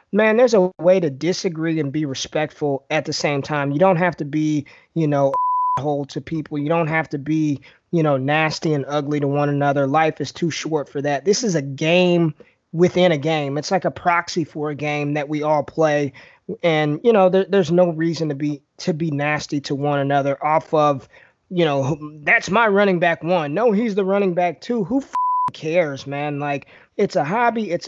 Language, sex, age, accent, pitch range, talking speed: English, male, 20-39, American, 145-180 Hz, 215 wpm